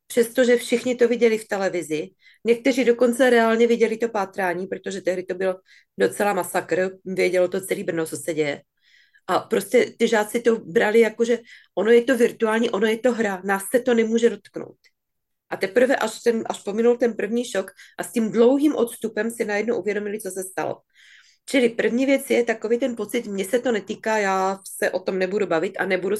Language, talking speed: Czech, 190 wpm